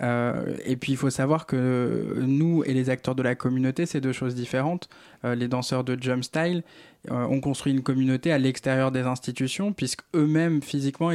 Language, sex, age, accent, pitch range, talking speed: French, male, 20-39, French, 130-150 Hz, 190 wpm